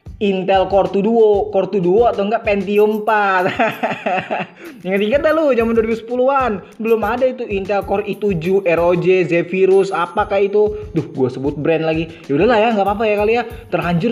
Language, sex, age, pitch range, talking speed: Indonesian, male, 20-39, 175-220 Hz, 175 wpm